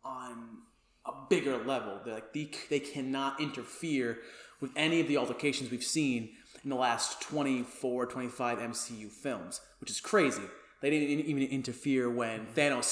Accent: American